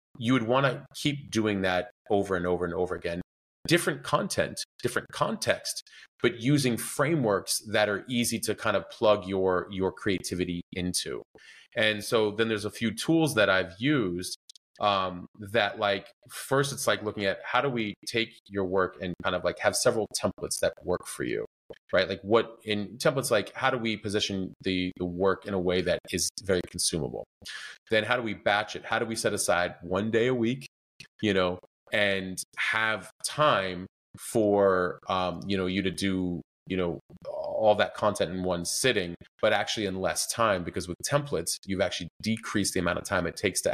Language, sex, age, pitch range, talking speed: English, male, 30-49, 90-115 Hz, 190 wpm